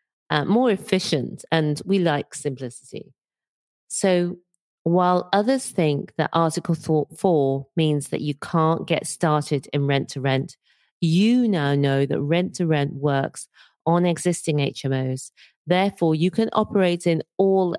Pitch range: 155-195 Hz